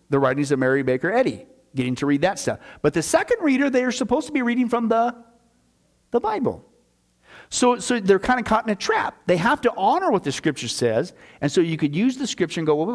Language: English